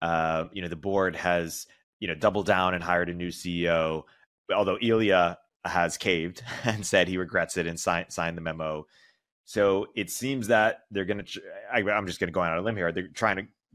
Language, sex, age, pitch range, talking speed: English, male, 30-49, 90-105 Hz, 220 wpm